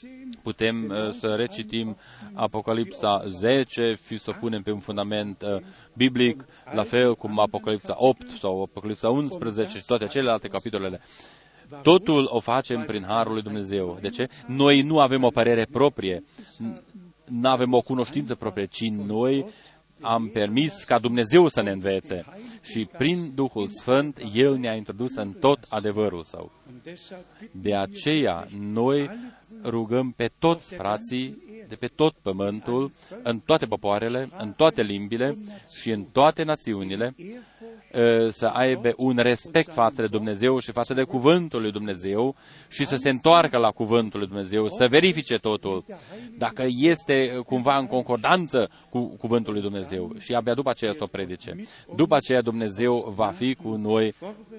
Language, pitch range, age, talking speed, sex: Romanian, 110-140 Hz, 30-49, 150 wpm, male